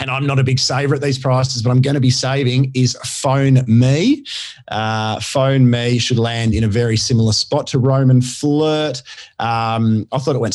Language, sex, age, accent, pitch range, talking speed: English, male, 30-49, Australian, 110-135 Hz, 205 wpm